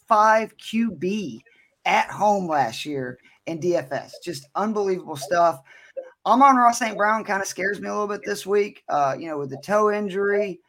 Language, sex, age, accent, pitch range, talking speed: English, male, 20-39, American, 165-210 Hz, 175 wpm